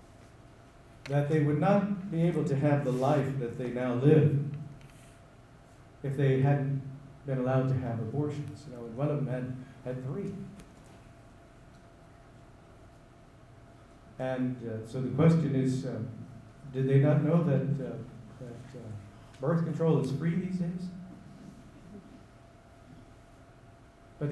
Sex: male